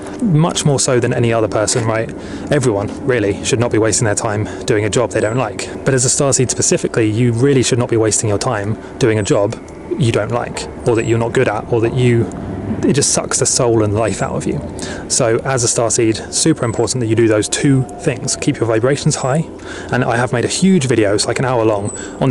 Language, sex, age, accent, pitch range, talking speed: English, male, 20-39, British, 110-135 Hz, 240 wpm